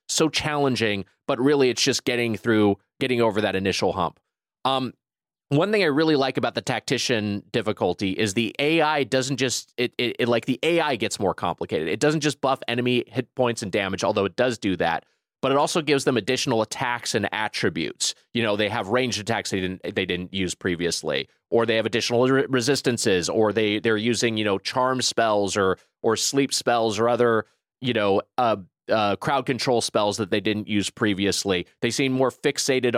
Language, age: English, 30-49